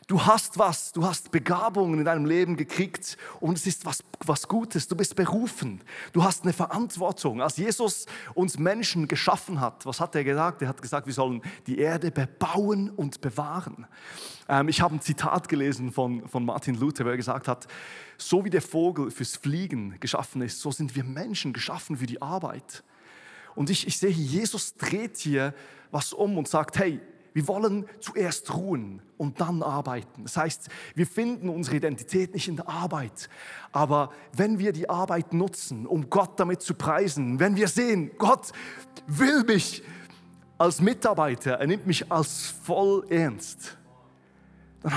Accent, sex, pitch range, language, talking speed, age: German, male, 140-185 Hz, German, 170 wpm, 30-49